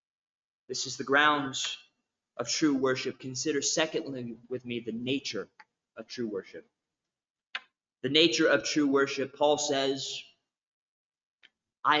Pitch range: 130-180 Hz